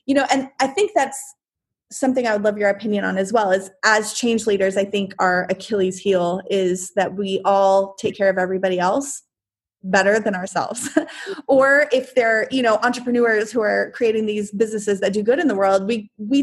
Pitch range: 205-260 Hz